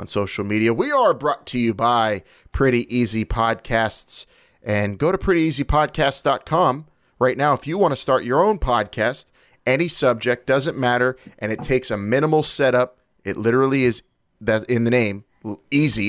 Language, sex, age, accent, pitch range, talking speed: English, male, 30-49, American, 110-130 Hz, 170 wpm